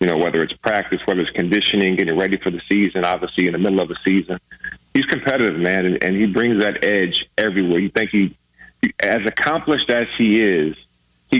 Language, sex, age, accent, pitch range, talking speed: English, male, 40-59, American, 90-105 Hz, 210 wpm